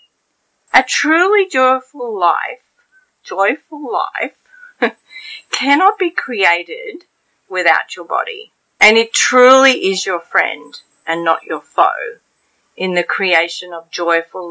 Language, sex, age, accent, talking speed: English, female, 40-59, Australian, 110 wpm